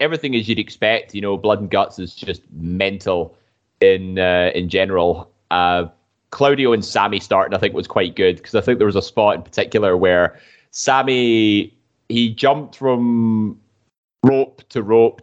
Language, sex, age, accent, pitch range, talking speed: English, male, 20-39, British, 100-125 Hz, 170 wpm